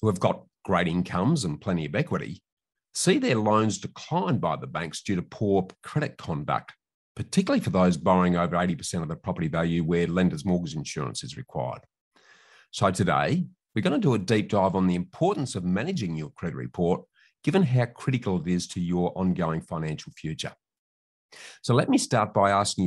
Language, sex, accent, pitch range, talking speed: English, male, Australian, 85-110 Hz, 185 wpm